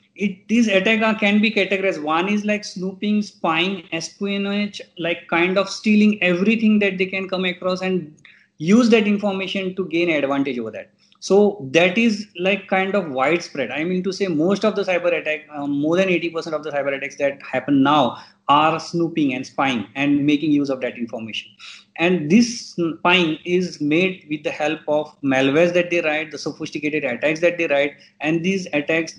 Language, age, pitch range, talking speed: Hindi, 20-39, 155-200 Hz, 185 wpm